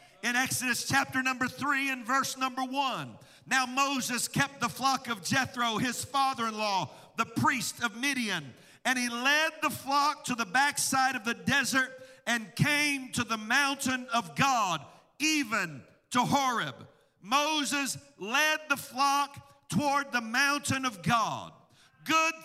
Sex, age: male, 50-69